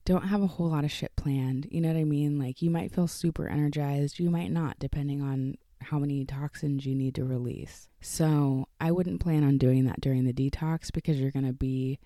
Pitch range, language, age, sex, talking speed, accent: 140-175 Hz, English, 20-39, female, 230 wpm, American